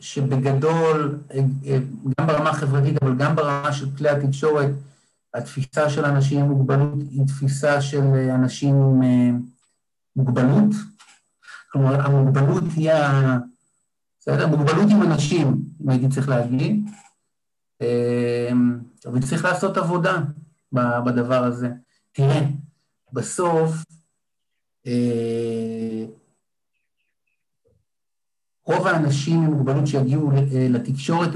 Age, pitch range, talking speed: 50-69, 130-155 Hz, 90 wpm